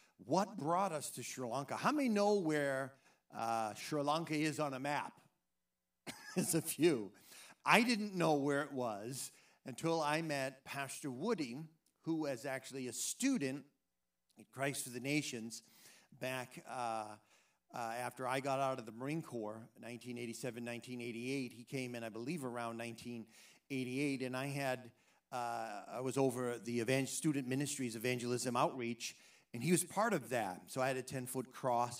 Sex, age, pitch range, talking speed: male, 50-69, 120-150 Hz, 160 wpm